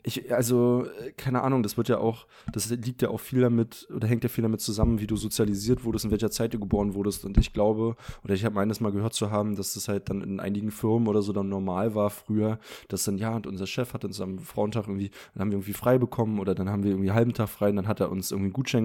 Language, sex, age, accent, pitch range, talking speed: German, male, 20-39, German, 100-120 Hz, 280 wpm